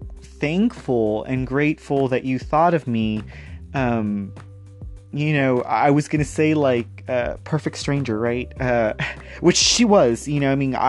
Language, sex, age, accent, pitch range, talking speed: English, male, 30-49, American, 110-140 Hz, 155 wpm